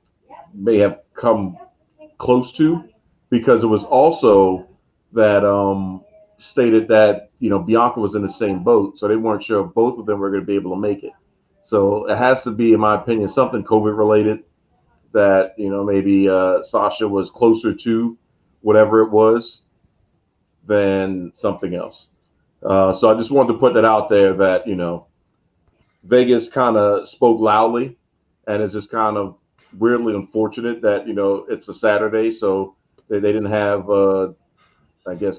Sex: male